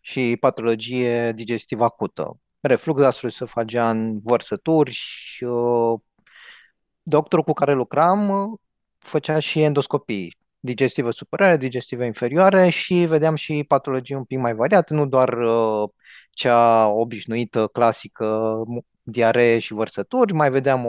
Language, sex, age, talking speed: Romanian, male, 20-39, 120 wpm